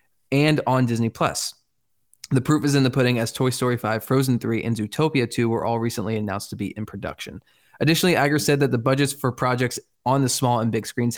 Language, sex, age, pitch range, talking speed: English, male, 20-39, 115-135 Hz, 220 wpm